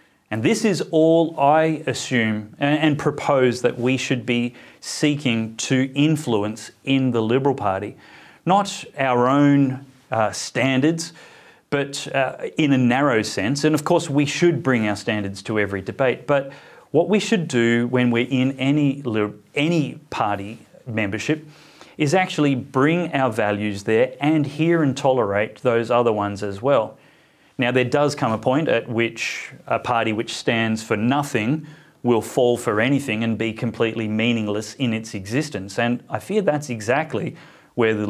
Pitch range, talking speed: 110-145 Hz, 155 wpm